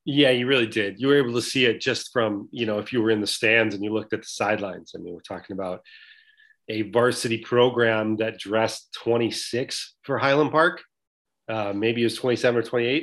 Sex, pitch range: male, 110-140 Hz